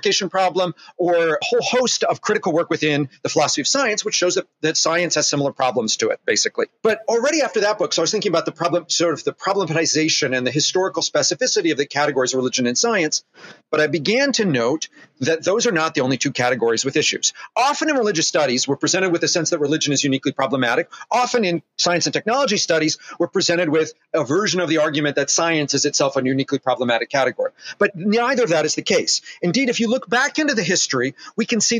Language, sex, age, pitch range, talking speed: English, male, 40-59, 155-210 Hz, 225 wpm